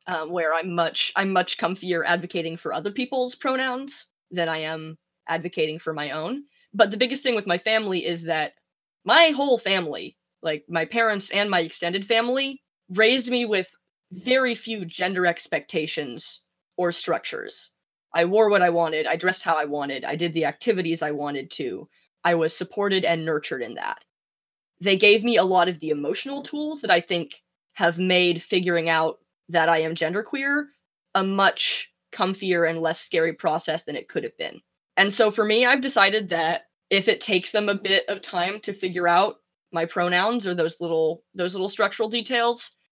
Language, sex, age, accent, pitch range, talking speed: English, female, 20-39, American, 170-225 Hz, 180 wpm